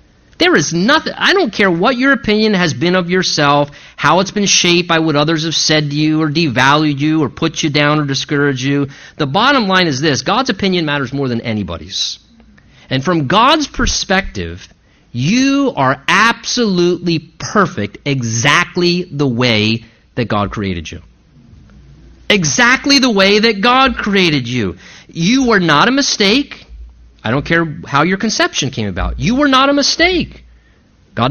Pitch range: 130-220 Hz